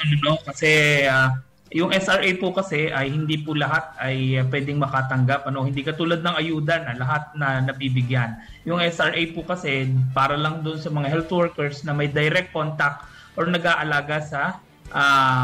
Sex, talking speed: male, 170 wpm